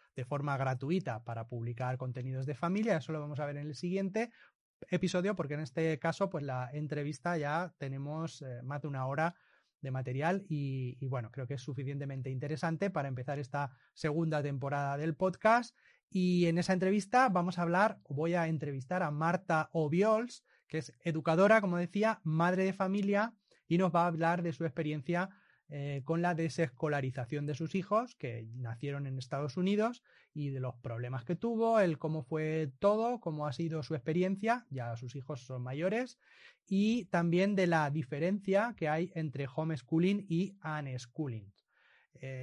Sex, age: male, 30-49